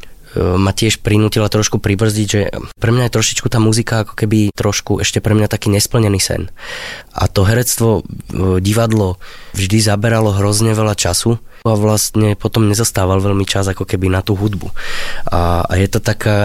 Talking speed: 170 wpm